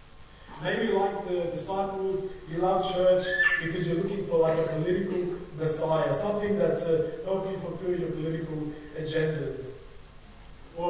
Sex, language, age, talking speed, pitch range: male, English, 30-49, 140 wpm, 155-200 Hz